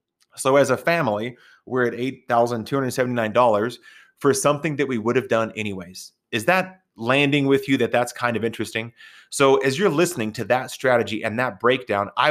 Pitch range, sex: 110-140 Hz, male